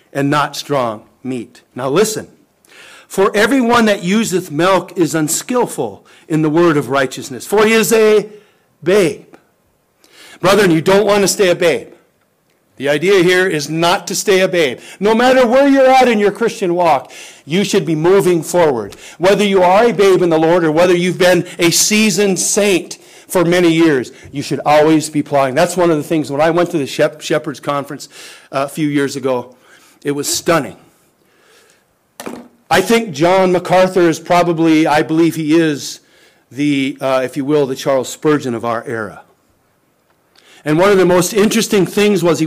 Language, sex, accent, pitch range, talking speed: English, male, American, 145-195 Hz, 180 wpm